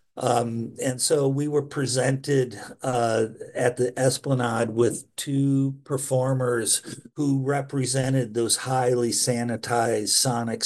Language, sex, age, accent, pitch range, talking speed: English, male, 50-69, American, 115-130 Hz, 105 wpm